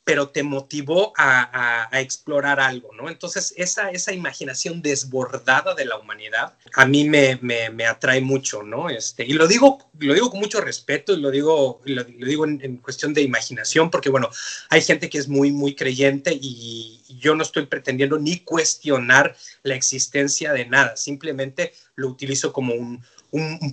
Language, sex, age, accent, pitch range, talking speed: Spanish, male, 30-49, Mexican, 135-170 Hz, 180 wpm